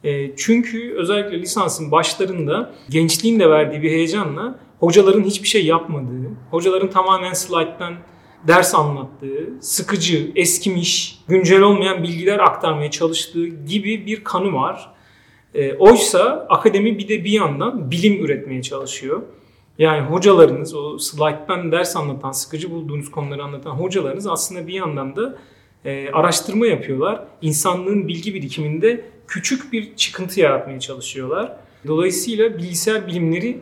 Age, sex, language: 40-59, male, Turkish